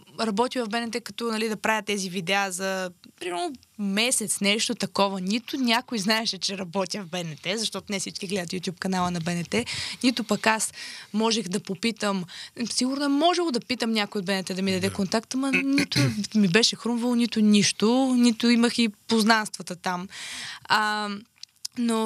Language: Bulgarian